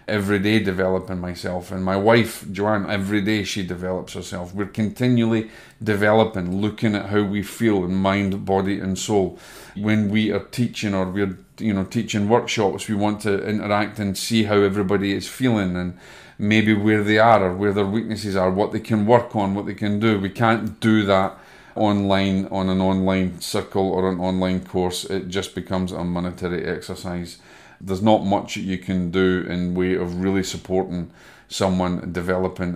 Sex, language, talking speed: male, English, 180 wpm